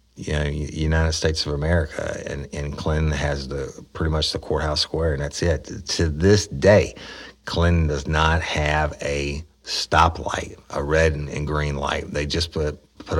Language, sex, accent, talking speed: English, male, American, 170 wpm